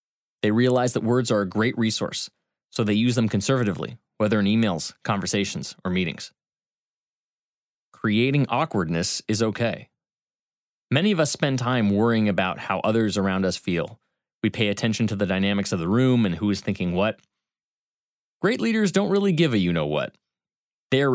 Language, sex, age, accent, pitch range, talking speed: English, male, 30-49, American, 105-130 Hz, 165 wpm